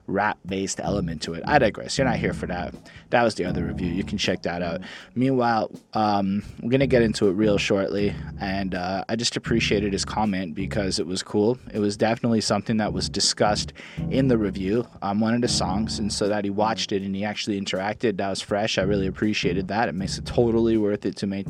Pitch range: 95-110 Hz